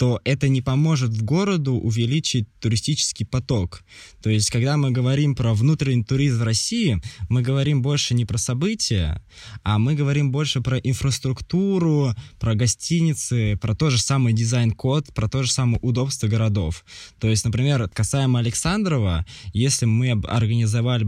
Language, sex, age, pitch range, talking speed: Russian, male, 20-39, 110-135 Hz, 150 wpm